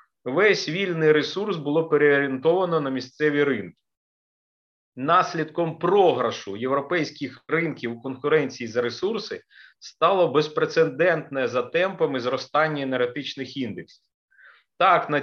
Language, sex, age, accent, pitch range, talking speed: Ukrainian, male, 30-49, native, 135-165 Hz, 100 wpm